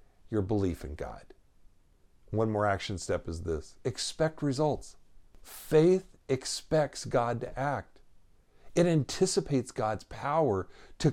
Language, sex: English, male